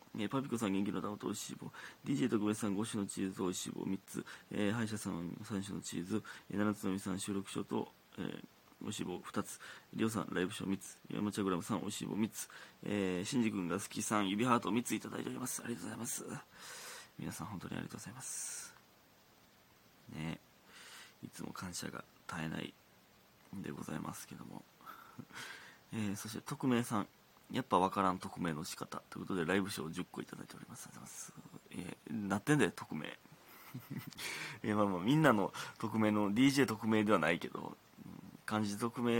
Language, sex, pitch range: Japanese, male, 100-120 Hz